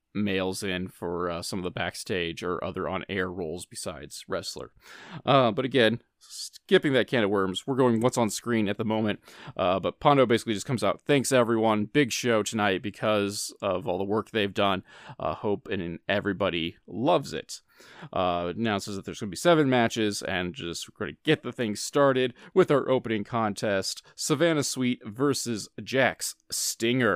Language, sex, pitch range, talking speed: English, male, 100-125 Hz, 175 wpm